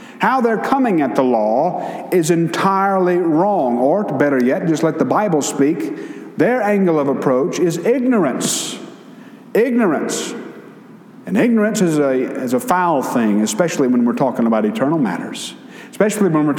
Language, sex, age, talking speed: English, male, 50-69, 150 wpm